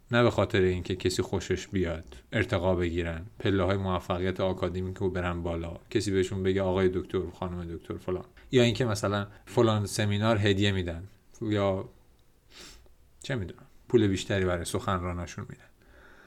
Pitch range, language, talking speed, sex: 90-120 Hz, Persian, 145 wpm, male